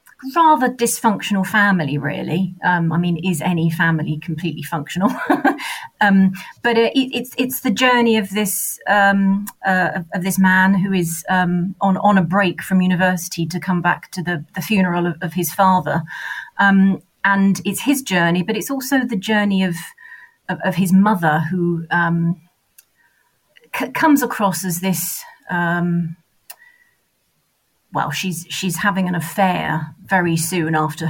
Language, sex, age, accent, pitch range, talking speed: English, female, 30-49, British, 170-205 Hz, 150 wpm